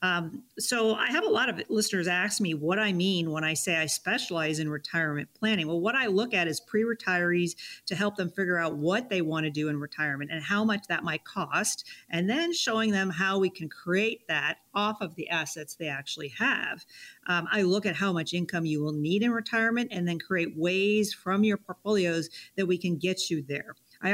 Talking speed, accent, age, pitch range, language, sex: 220 wpm, American, 50-69, 160-205 Hz, English, female